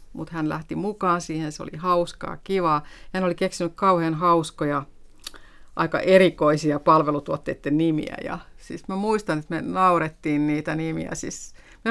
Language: Finnish